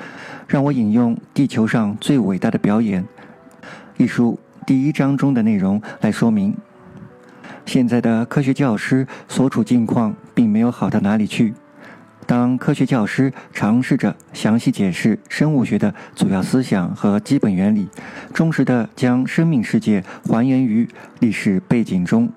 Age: 50-69